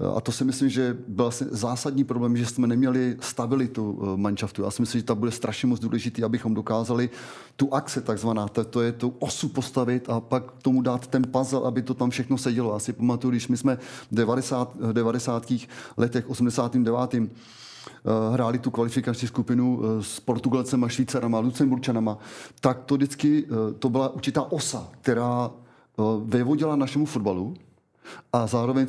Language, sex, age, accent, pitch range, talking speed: Czech, male, 30-49, native, 115-130 Hz, 160 wpm